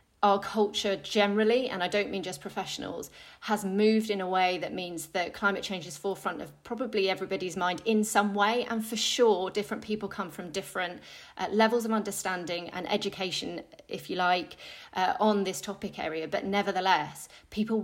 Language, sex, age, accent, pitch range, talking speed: English, female, 30-49, British, 180-210 Hz, 180 wpm